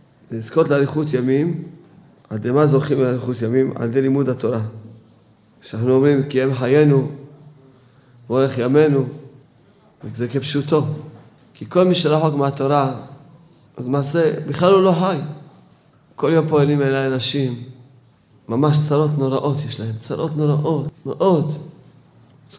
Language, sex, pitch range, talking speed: Hebrew, male, 130-150 Hz, 125 wpm